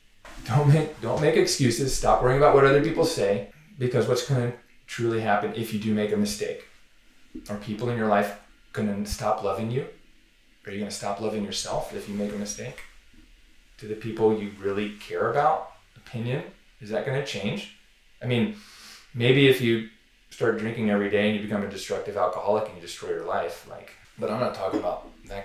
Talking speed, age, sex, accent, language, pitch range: 195 wpm, 20-39, male, American, English, 105-130 Hz